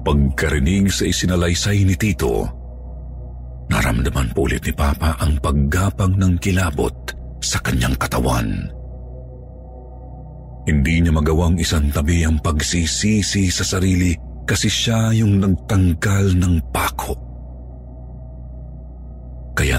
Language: Filipino